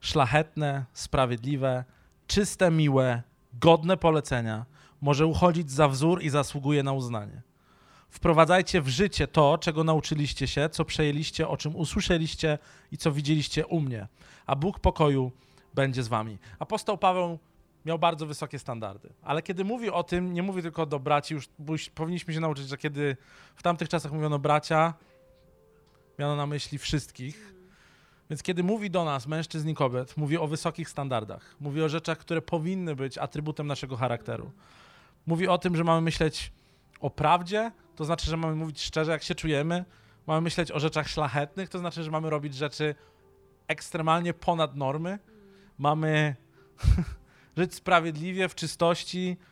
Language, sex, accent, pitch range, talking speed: Polish, male, native, 145-175 Hz, 150 wpm